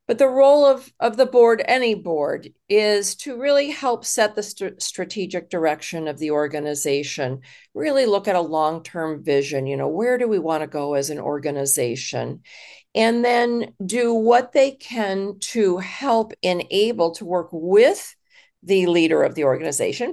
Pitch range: 165-230 Hz